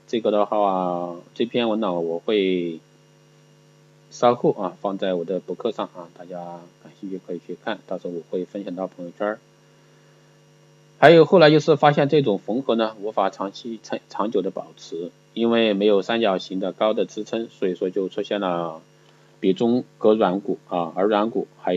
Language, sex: Chinese, male